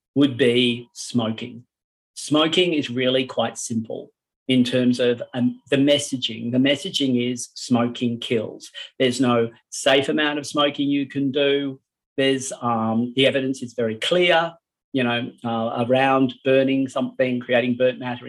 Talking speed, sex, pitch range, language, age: 145 wpm, male, 125-145 Hz, English, 40-59